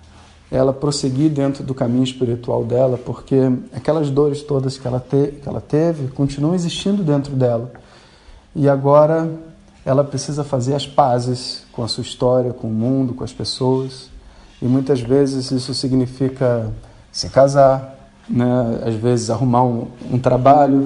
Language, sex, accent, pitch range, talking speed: Portuguese, male, Brazilian, 125-155 Hz, 150 wpm